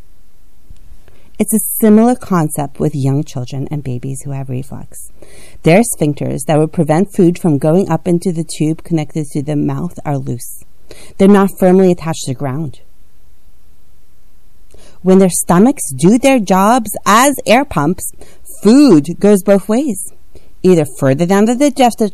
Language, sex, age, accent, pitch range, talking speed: English, female, 40-59, American, 140-200 Hz, 150 wpm